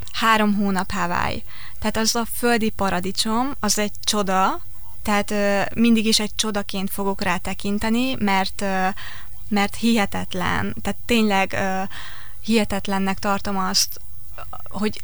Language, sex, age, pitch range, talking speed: Hungarian, female, 20-39, 195-220 Hz, 110 wpm